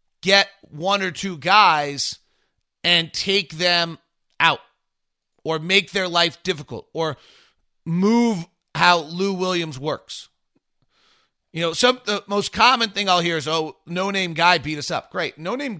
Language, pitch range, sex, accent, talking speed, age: English, 145-190 Hz, male, American, 145 wpm, 30-49